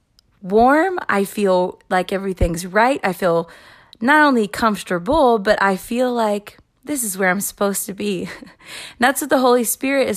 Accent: American